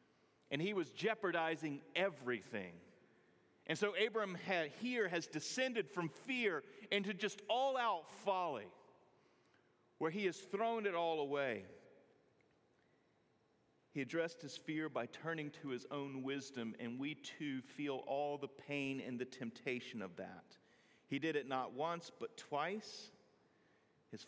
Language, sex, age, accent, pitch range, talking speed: English, male, 40-59, American, 125-165 Hz, 135 wpm